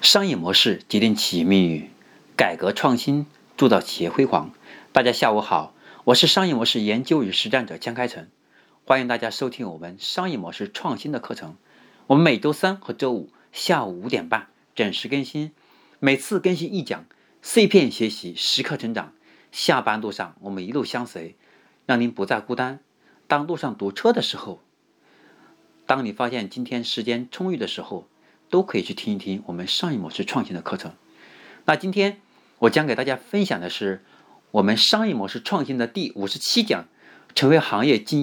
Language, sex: Chinese, male